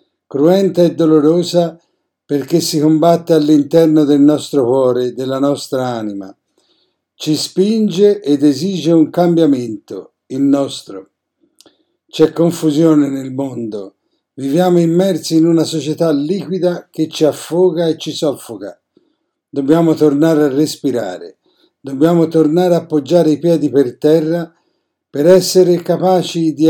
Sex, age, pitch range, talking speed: male, 50-69, 145-175 Hz, 120 wpm